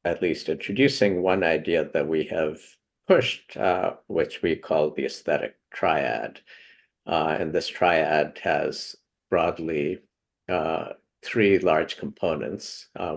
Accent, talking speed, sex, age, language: American, 125 wpm, male, 50-69, English